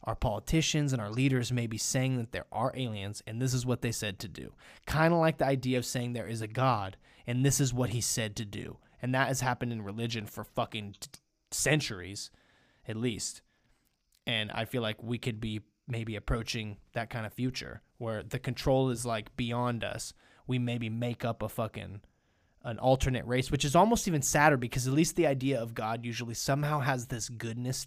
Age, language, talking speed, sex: 20-39, English, 205 wpm, male